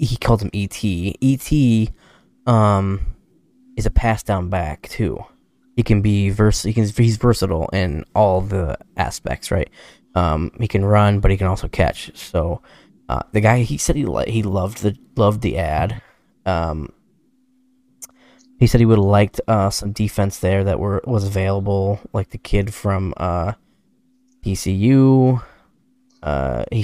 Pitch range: 95-120 Hz